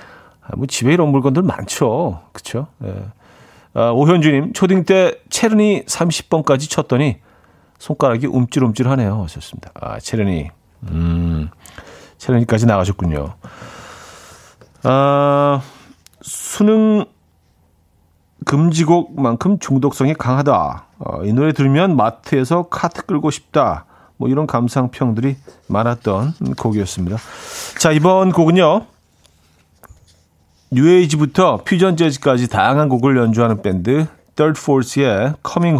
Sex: male